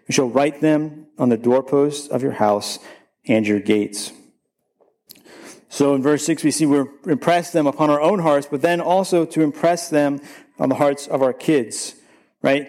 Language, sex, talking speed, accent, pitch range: English, male, 190 wpm, American, 130-155 Hz